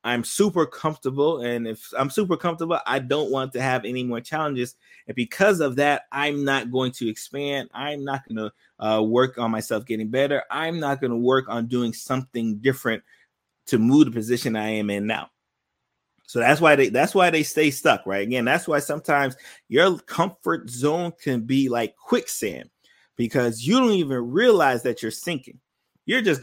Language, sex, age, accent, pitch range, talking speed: English, male, 20-39, American, 120-155 Hz, 180 wpm